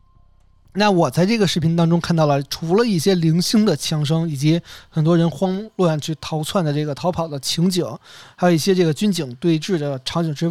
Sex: male